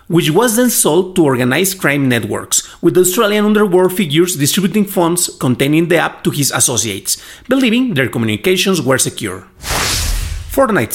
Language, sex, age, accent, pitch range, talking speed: English, male, 30-49, Mexican, 130-200 Hz, 140 wpm